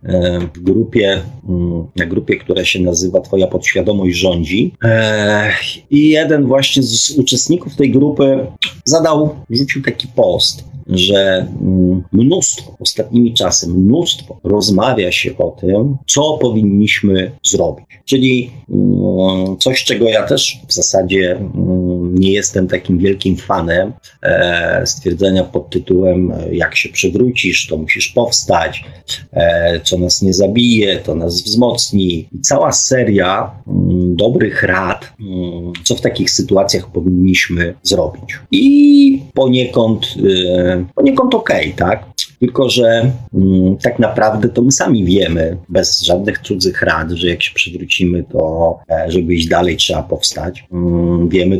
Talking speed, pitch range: 115 wpm, 90-120 Hz